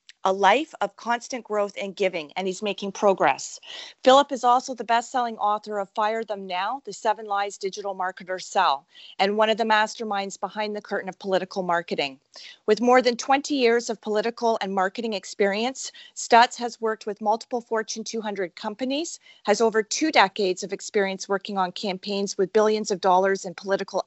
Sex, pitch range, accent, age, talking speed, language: female, 195-235 Hz, American, 40-59, 175 wpm, English